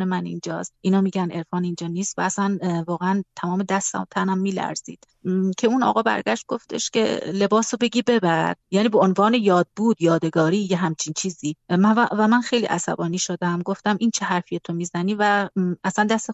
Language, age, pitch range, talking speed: Persian, 30-49, 180-215 Hz, 180 wpm